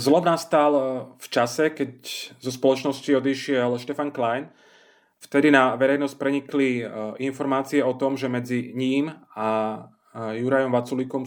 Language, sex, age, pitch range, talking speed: Slovak, male, 30-49, 120-140 Hz, 120 wpm